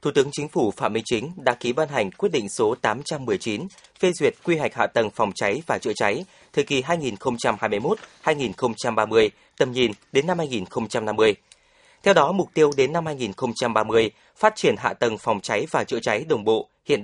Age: 20-39